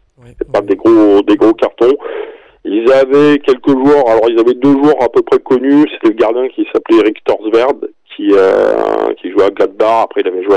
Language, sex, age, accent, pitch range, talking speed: French, male, 40-59, French, 340-435 Hz, 205 wpm